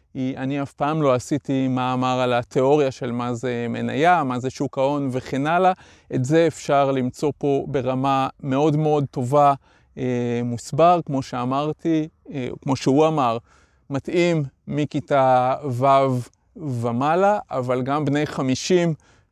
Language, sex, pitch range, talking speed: Hebrew, male, 125-150 Hz, 135 wpm